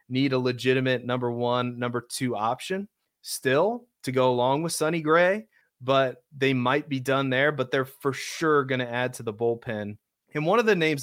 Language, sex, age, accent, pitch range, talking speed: English, male, 30-49, American, 125-155 Hz, 195 wpm